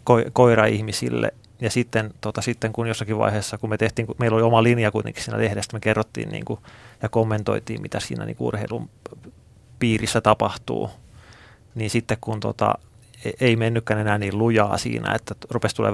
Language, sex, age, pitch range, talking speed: Finnish, male, 30-49, 105-115 Hz, 170 wpm